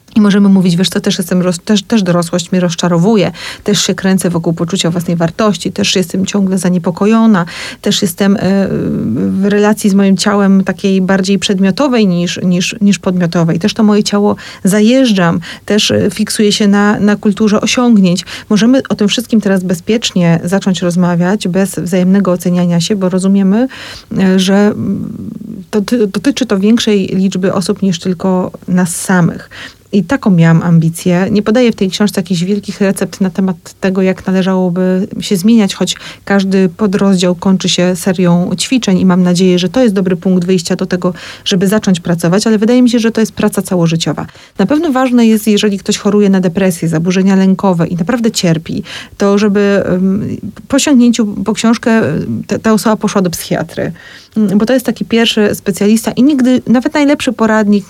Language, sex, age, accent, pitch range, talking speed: Polish, female, 30-49, native, 185-215 Hz, 165 wpm